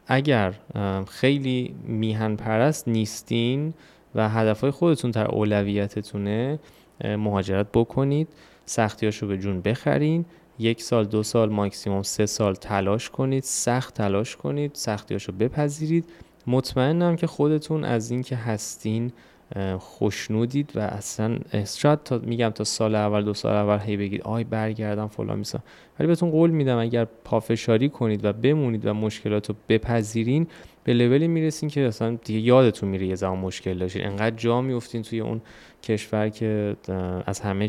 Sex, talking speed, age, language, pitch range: male, 140 wpm, 20-39, Persian, 105-140 Hz